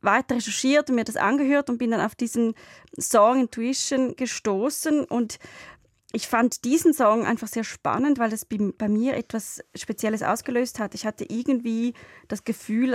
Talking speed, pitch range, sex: 160 wpm, 210-255 Hz, female